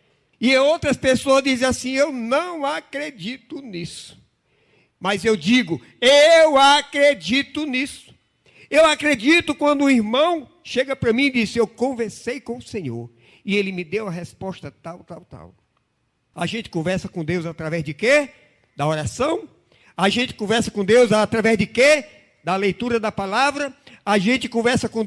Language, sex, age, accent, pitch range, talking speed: Portuguese, male, 50-69, Brazilian, 170-260 Hz, 155 wpm